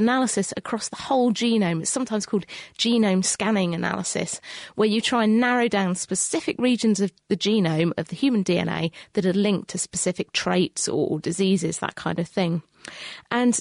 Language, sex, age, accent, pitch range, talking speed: English, female, 30-49, British, 190-235 Hz, 170 wpm